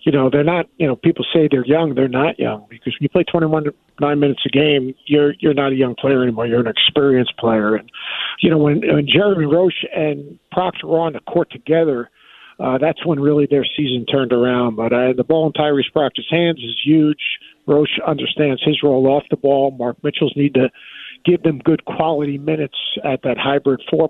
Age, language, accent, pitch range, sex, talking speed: 50-69, English, American, 130-160 Hz, male, 215 wpm